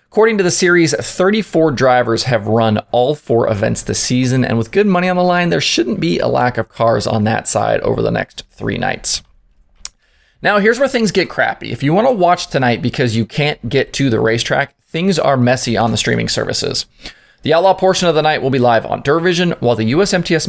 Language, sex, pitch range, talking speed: English, male, 115-170 Hz, 220 wpm